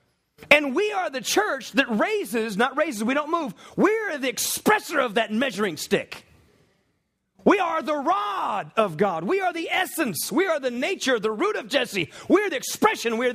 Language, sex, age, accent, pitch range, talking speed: English, male, 40-59, American, 205-335 Hz, 200 wpm